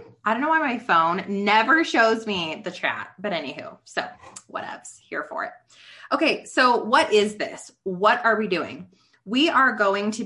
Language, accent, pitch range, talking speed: English, American, 180-235 Hz, 180 wpm